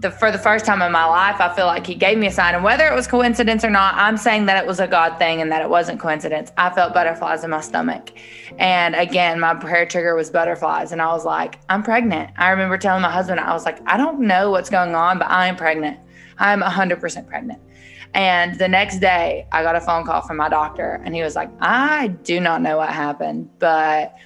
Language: English